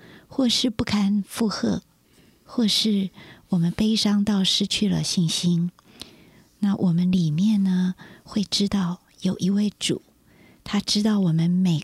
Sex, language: female, Chinese